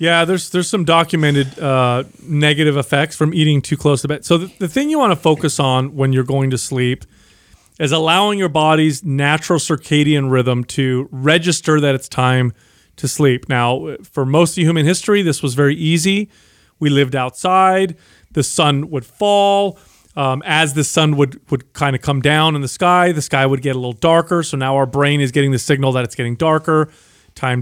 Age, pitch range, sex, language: 30-49, 135-170 Hz, male, English